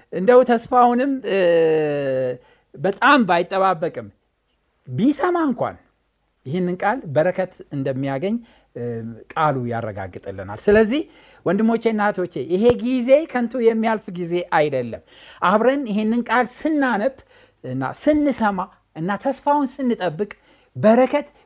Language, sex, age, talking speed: Amharic, male, 60-79, 85 wpm